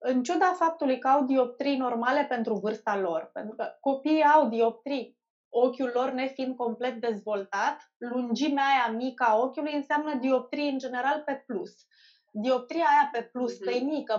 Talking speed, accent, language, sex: 155 wpm, native, Romanian, female